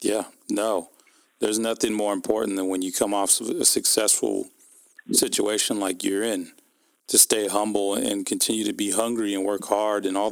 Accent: American